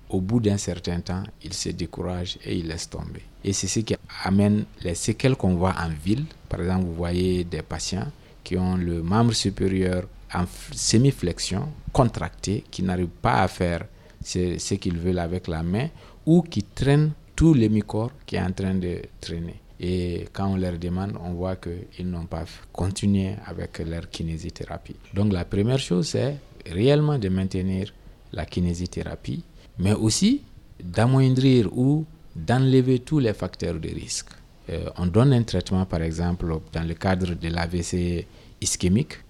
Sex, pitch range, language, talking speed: male, 85-110 Hz, French, 165 wpm